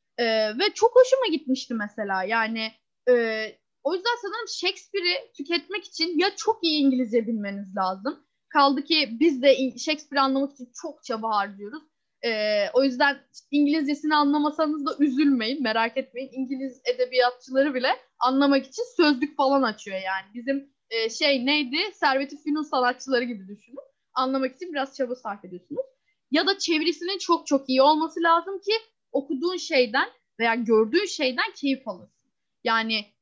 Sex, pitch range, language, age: female, 245-345 Hz, Turkish, 10-29